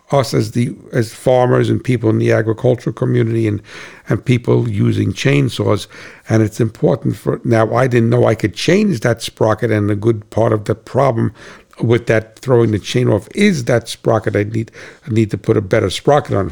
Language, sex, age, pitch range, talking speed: English, male, 60-79, 110-140 Hz, 200 wpm